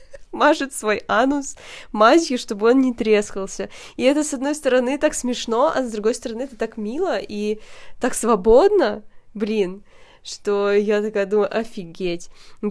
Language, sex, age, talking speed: Russian, female, 20-39, 145 wpm